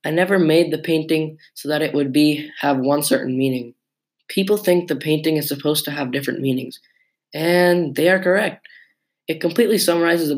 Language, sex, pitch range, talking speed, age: English, male, 140-165 Hz, 185 wpm, 10-29